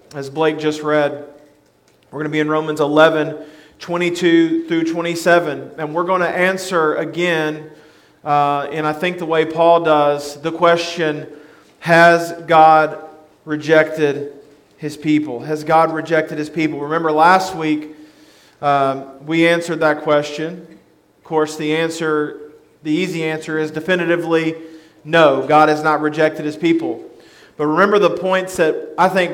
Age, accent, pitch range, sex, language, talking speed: 40-59, American, 155-185 Hz, male, English, 145 wpm